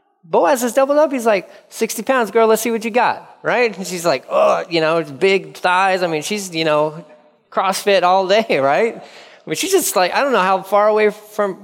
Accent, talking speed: American, 230 wpm